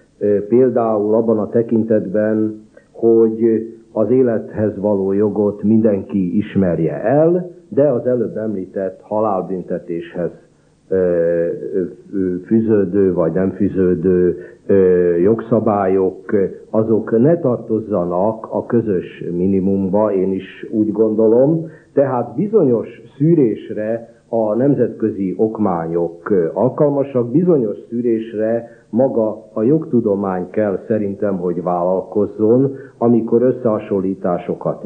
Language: Hungarian